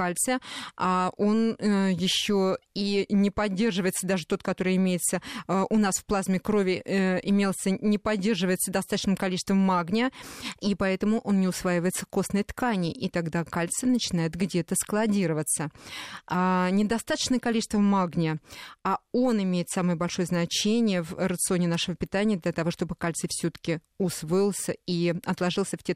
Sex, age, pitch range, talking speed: female, 20-39, 175-205 Hz, 145 wpm